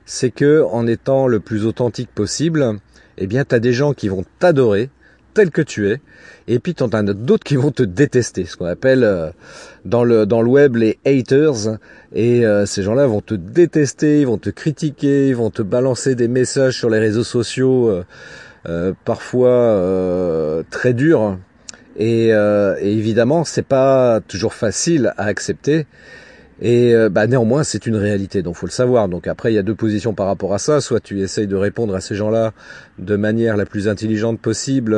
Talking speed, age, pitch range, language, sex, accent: 195 wpm, 40-59, 100-130 Hz, French, male, French